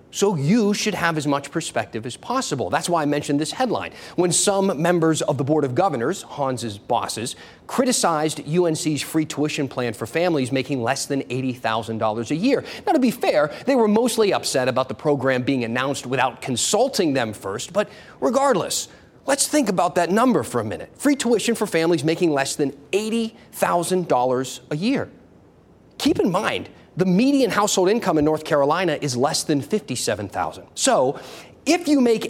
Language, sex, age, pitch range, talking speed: English, male, 30-49, 140-220 Hz, 175 wpm